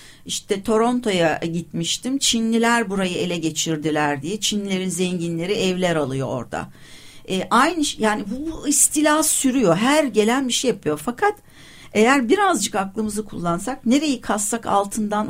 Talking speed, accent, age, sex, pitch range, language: 130 wpm, native, 60-79, female, 170-245 Hz, Turkish